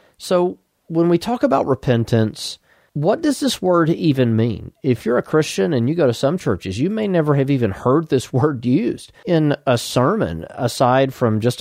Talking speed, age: 190 wpm, 40-59